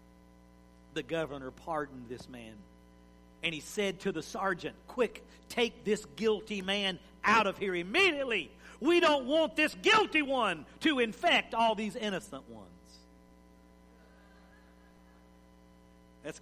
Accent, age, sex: American, 50-69, male